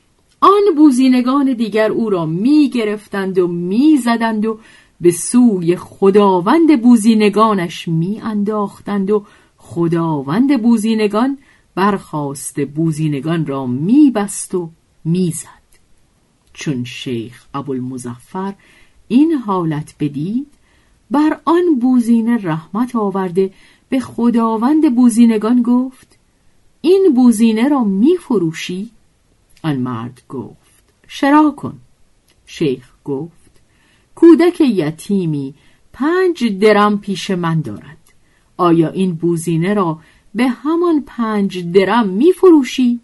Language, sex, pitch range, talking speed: Persian, female, 165-245 Hz, 90 wpm